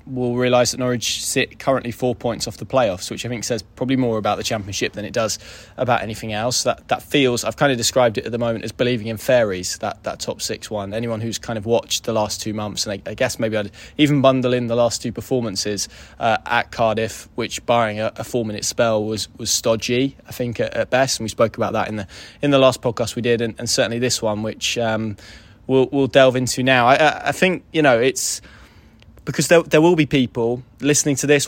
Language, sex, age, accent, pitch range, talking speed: English, male, 20-39, British, 110-125 Hz, 235 wpm